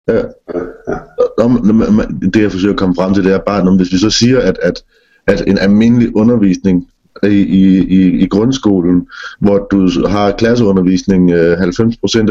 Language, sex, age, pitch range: Danish, male, 30-49, 95-115 Hz